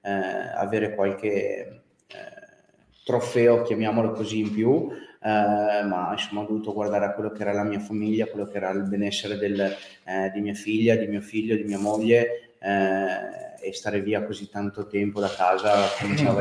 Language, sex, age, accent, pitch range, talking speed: Italian, male, 20-39, native, 100-115 Hz, 170 wpm